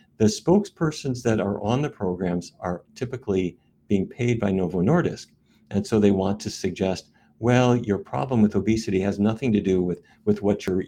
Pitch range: 95-115 Hz